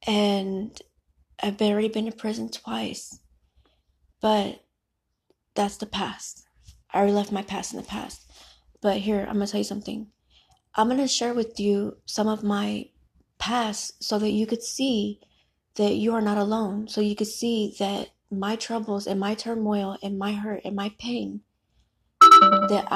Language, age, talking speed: Amharic, 30-49, 170 wpm